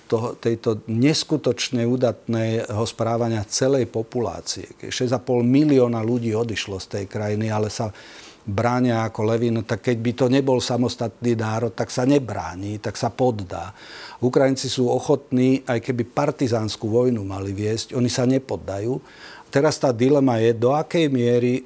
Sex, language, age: male, Slovak, 50-69